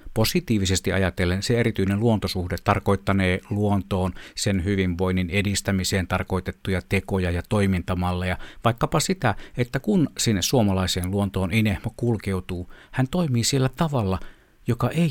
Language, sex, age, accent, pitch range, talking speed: Finnish, male, 60-79, native, 95-120 Hz, 115 wpm